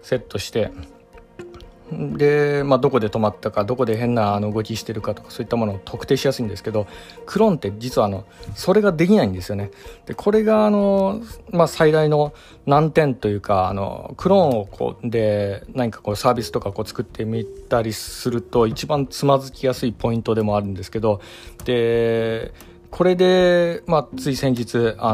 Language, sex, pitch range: Japanese, male, 105-135 Hz